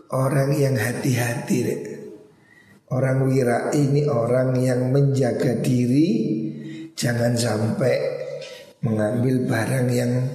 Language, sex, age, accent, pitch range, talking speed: Indonesian, male, 50-69, native, 125-150 Hz, 85 wpm